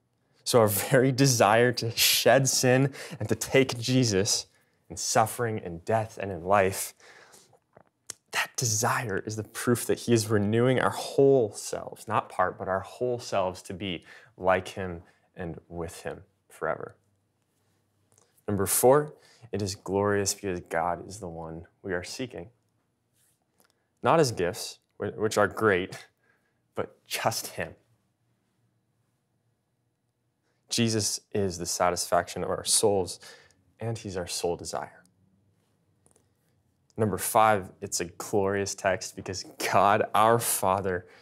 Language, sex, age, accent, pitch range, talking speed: English, male, 20-39, American, 95-120 Hz, 130 wpm